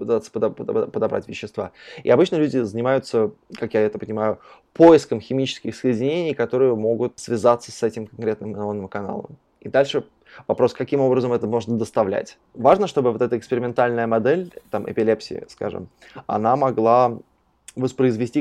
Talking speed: 135 wpm